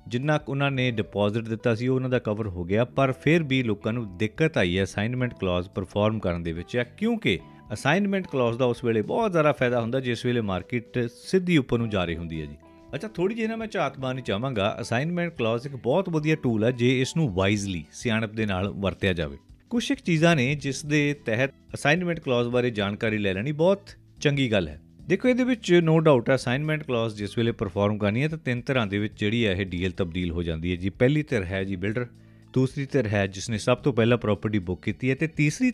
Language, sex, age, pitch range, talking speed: Punjabi, male, 40-59, 100-140 Hz, 205 wpm